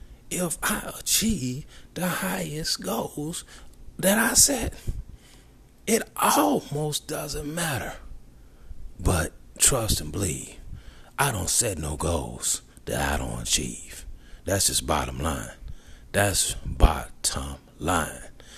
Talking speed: 105 wpm